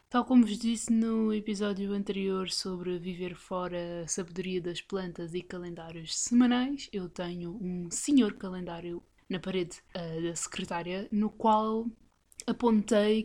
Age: 20-39